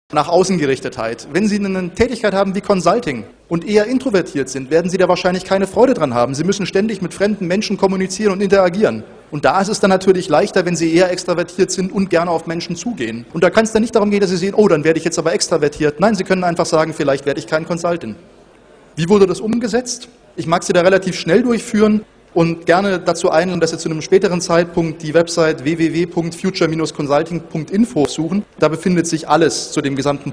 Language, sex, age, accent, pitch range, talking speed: German, male, 30-49, German, 150-190 Hz, 210 wpm